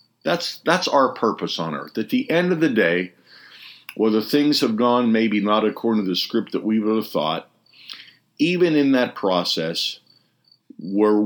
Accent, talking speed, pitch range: American, 170 wpm, 90-120 Hz